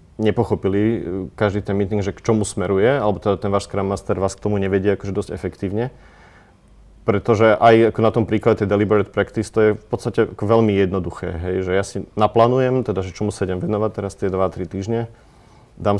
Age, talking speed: 30-49, 180 wpm